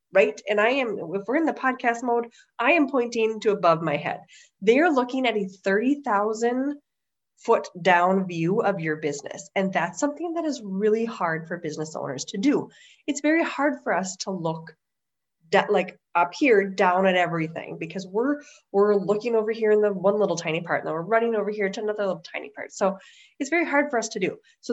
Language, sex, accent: English, female, American